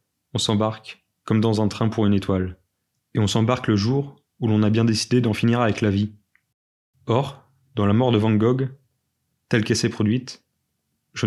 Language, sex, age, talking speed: French, male, 20-39, 190 wpm